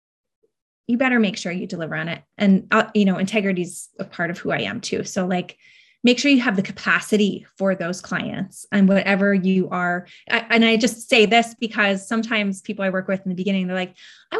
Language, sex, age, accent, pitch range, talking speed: English, female, 20-39, American, 190-240 Hz, 220 wpm